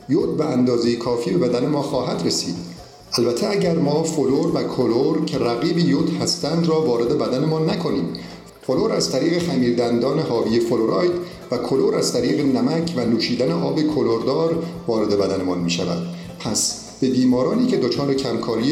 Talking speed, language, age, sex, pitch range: 155 wpm, Persian, 50-69, male, 110-165 Hz